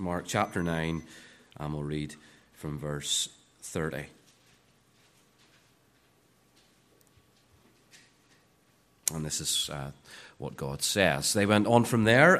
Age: 30-49